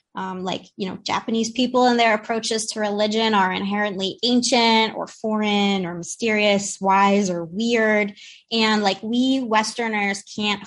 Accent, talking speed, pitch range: American, 145 wpm, 200-245 Hz